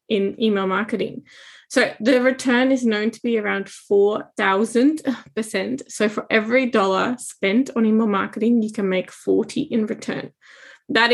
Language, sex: English, female